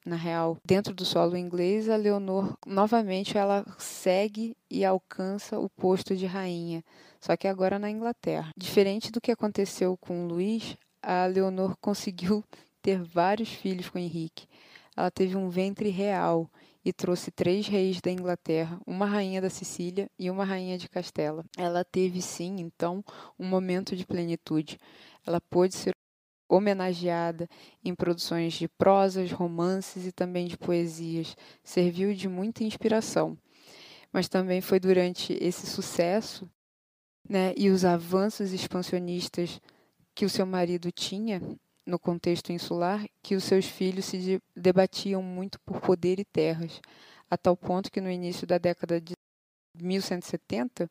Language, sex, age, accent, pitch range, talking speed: Portuguese, female, 20-39, Brazilian, 175-195 Hz, 145 wpm